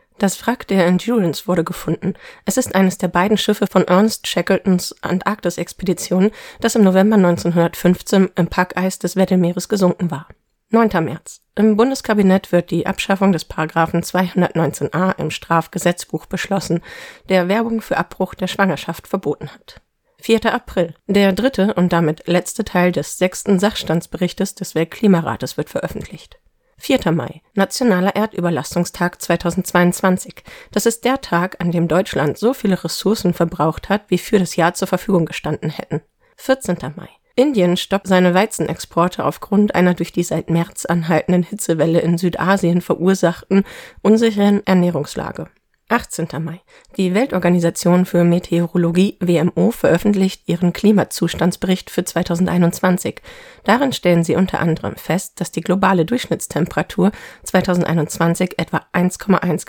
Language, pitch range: German, 170-200 Hz